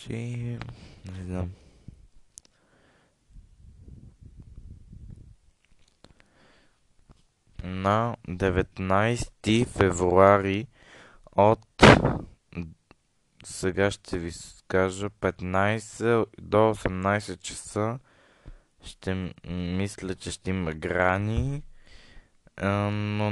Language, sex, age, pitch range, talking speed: Bulgarian, male, 20-39, 90-110 Hz, 55 wpm